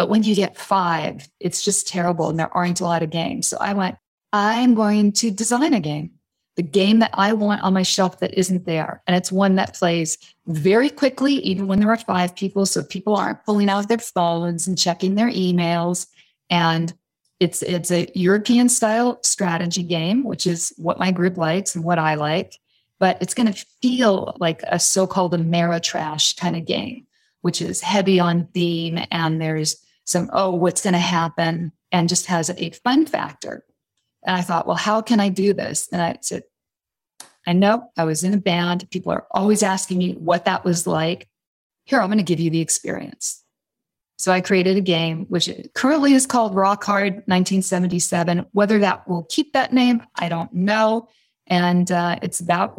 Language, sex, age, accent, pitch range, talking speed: English, female, 40-59, American, 170-205 Hz, 195 wpm